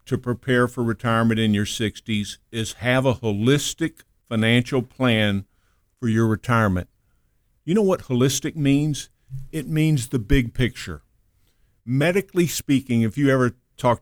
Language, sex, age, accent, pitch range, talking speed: English, male, 50-69, American, 115-135 Hz, 135 wpm